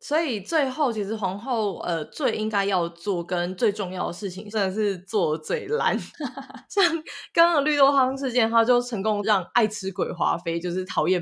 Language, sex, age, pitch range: Chinese, female, 20-39, 175-245 Hz